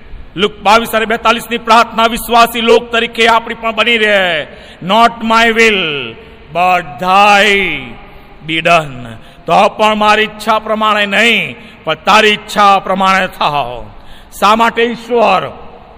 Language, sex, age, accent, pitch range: Gujarati, male, 50-69, native, 190-230 Hz